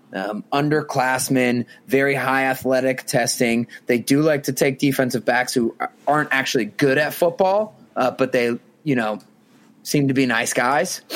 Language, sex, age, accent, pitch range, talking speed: English, male, 30-49, American, 125-150 Hz, 155 wpm